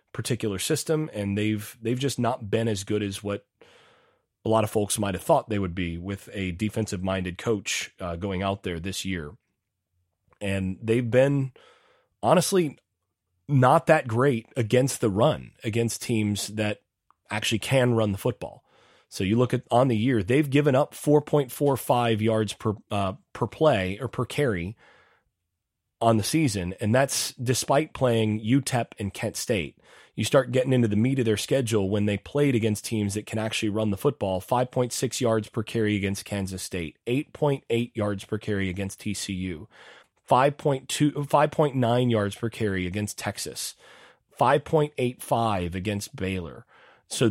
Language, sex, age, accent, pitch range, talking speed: English, male, 30-49, American, 100-130 Hz, 160 wpm